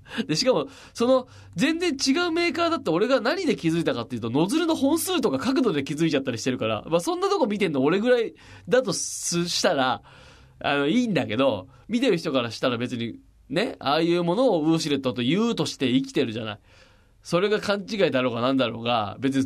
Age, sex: 20-39, male